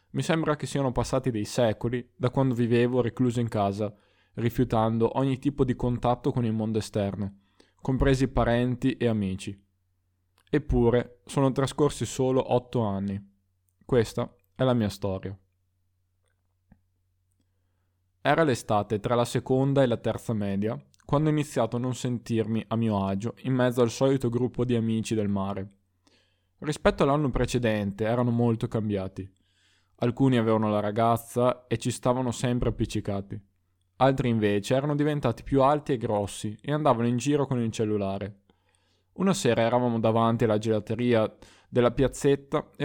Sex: male